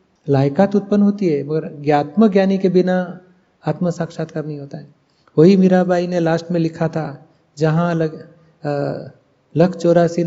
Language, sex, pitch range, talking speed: Hindi, male, 155-175 Hz, 150 wpm